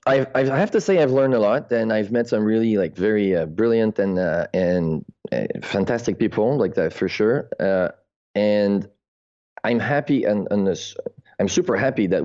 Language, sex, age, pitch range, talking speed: English, male, 30-49, 100-120 Hz, 190 wpm